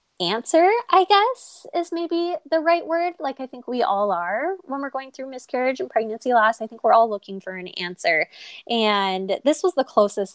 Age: 10-29